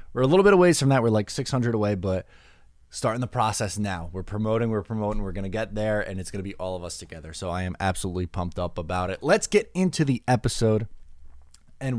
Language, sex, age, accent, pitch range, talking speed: English, male, 20-39, American, 90-120 Hz, 240 wpm